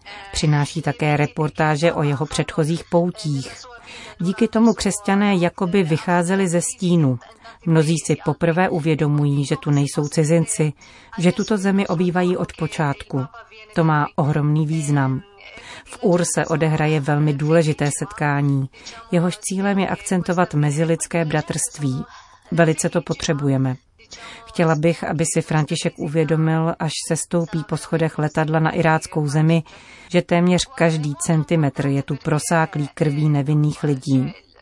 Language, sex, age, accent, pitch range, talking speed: Czech, female, 40-59, native, 150-180 Hz, 125 wpm